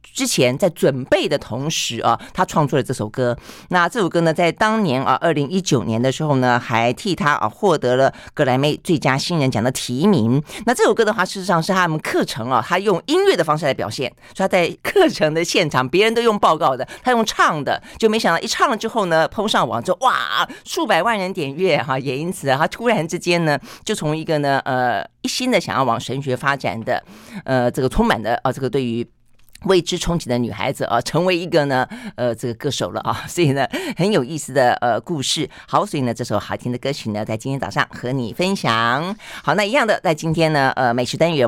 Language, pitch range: Chinese, 130-190 Hz